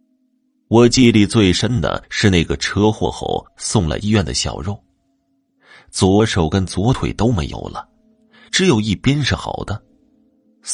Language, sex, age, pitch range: Chinese, male, 30-49, 85-130 Hz